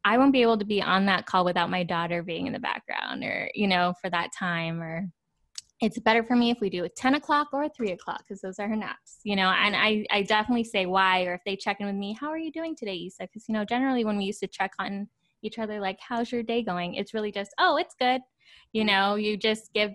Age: 10-29